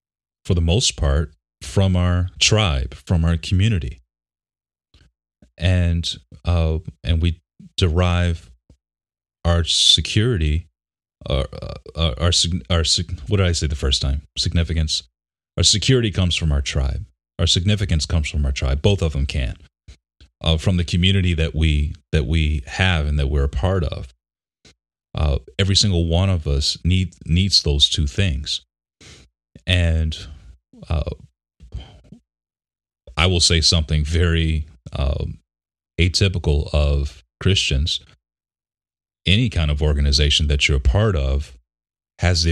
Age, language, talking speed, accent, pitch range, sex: 30-49, English, 135 wpm, American, 75-90 Hz, male